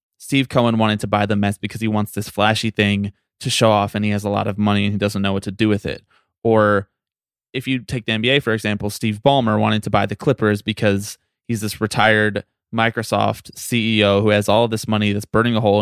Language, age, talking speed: English, 20-39, 240 wpm